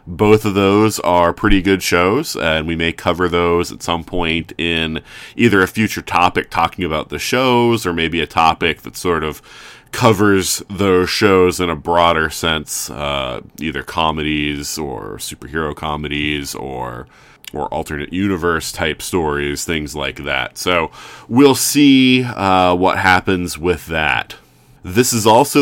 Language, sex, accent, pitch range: English, male, American, 80-95 Hz